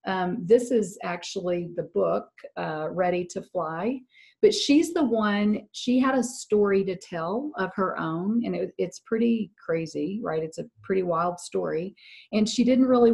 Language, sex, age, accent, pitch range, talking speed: English, female, 40-59, American, 175-215 Hz, 170 wpm